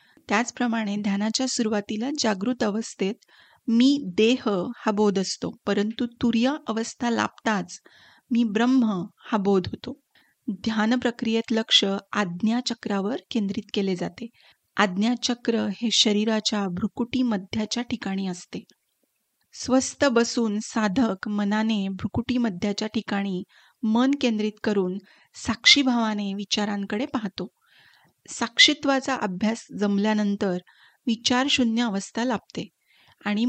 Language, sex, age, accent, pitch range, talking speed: Marathi, female, 30-49, native, 205-245 Hz, 95 wpm